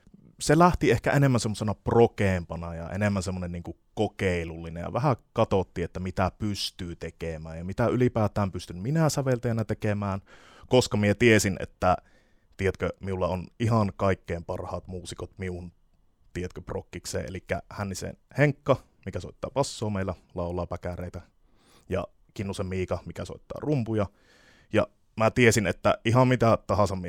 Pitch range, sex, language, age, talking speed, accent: 90-115 Hz, male, Finnish, 20-39, 135 wpm, native